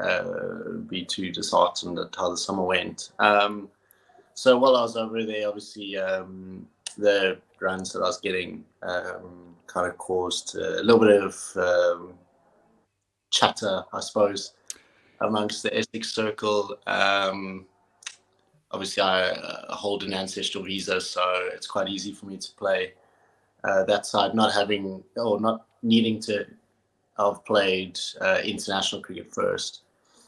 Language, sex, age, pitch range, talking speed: English, male, 20-39, 95-105 Hz, 145 wpm